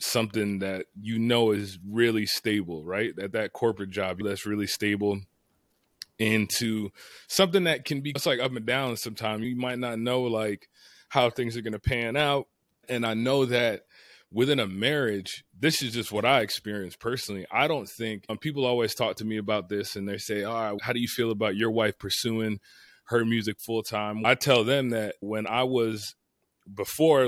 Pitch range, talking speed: 105-125 Hz, 195 wpm